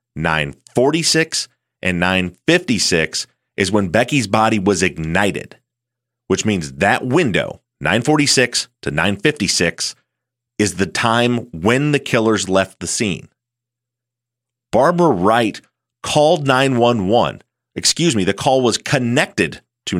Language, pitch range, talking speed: English, 95-125 Hz, 110 wpm